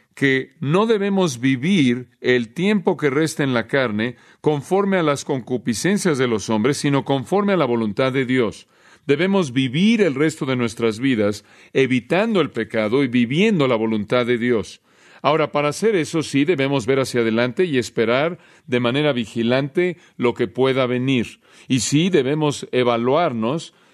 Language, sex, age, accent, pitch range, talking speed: Spanish, male, 40-59, Mexican, 120-165 Hz, 160 wpm